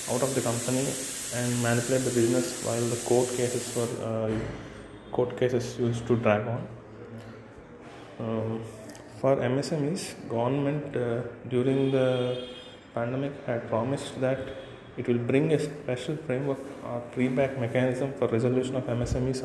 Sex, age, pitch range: male, 20-39, 120-135 Hz